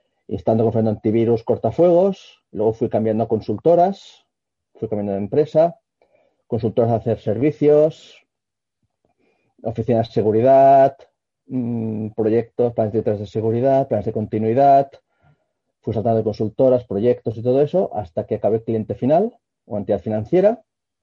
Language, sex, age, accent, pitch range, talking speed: Spanish, male, 40-59, Spanish, 110-135 Hz, 130 wpm